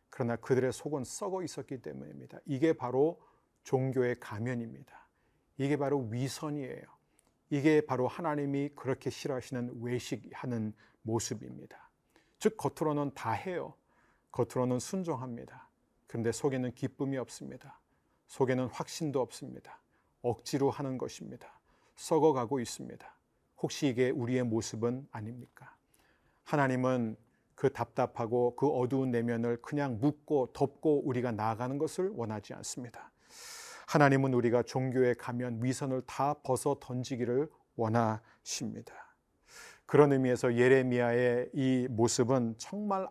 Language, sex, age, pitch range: Korean, male, 40-59, 120-145 Hz